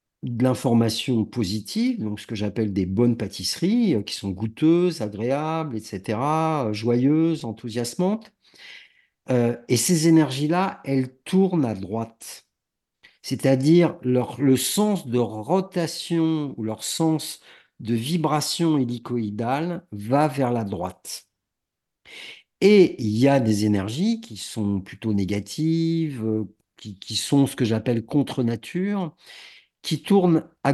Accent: French